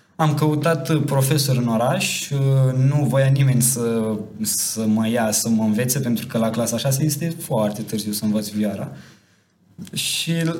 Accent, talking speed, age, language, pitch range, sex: native, 155 wpm, 20-39, Romanian, 120-160 Hz, male